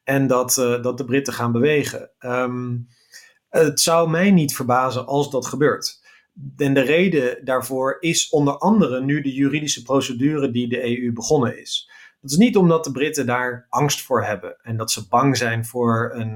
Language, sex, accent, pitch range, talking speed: Dutch, male, Dutch, 120-150 Hz, 175 wpm